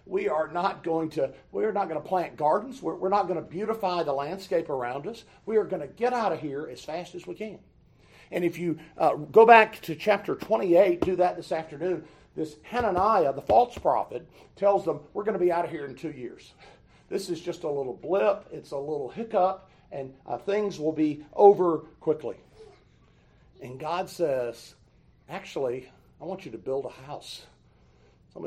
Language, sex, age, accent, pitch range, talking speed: English, male, 50-69, American, 150-210 Hz, 200 wpm